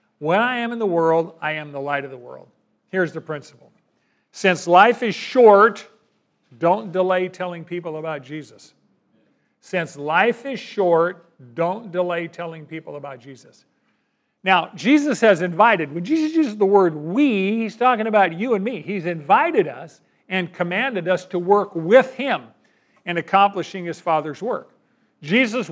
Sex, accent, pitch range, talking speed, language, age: male, American, 160-200 Hz, 160 wpm, English, 50-69